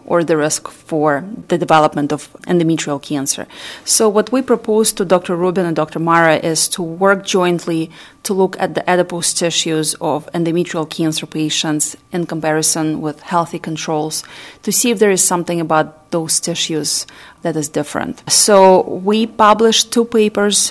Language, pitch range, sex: English, 160-200 Hz, female